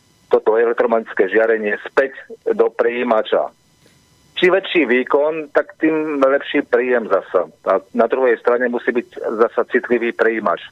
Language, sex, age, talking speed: Slovak, male, 40-59, 130 wpm